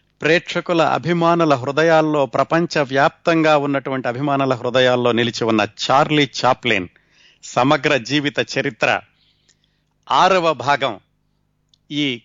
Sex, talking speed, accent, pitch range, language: male, 85 wpm, native, 125-155 Hz, Telugu